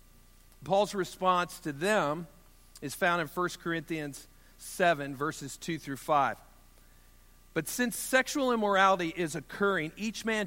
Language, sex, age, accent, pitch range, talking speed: English, male, 50-69, American, 145-190 Hz, 125 wpm